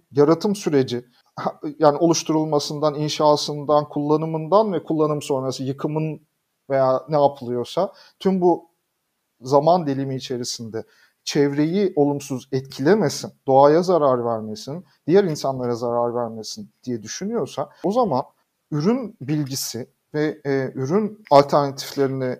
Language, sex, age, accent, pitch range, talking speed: Turkish, male, 40-59, native, 135-180 Hz, 100 wpm